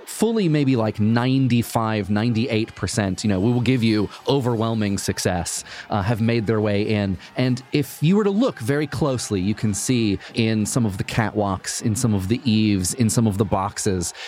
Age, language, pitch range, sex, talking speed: 30-49, English, 100-125 Hz, male, 195 wpm